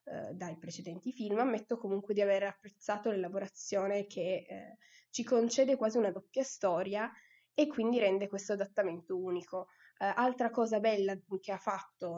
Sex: female